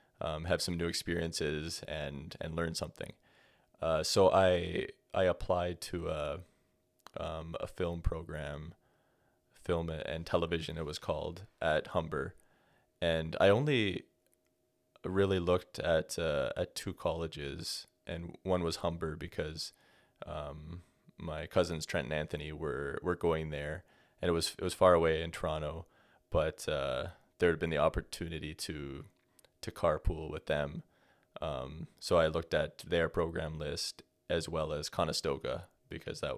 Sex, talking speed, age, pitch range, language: male, 145 wpm, 20-39, 80-90 Hz, English